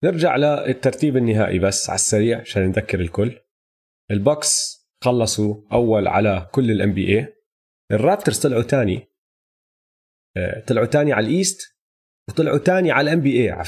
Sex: male